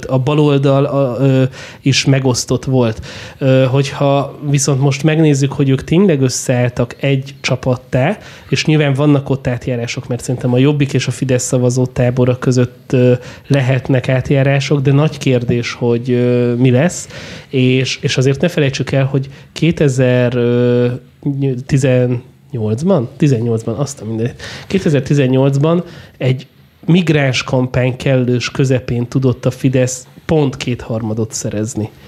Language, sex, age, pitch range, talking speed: Hungarian, male, 30-49, 125-145 Hz, 110 wpm